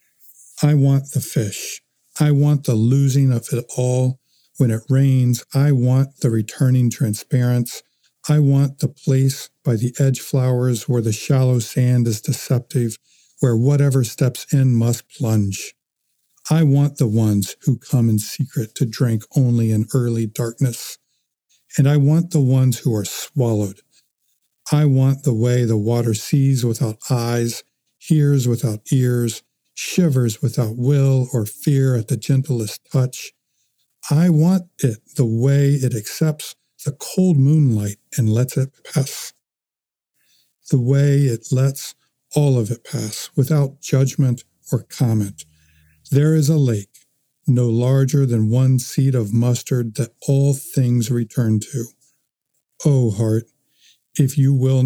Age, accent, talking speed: 50-69, American, 140 wpm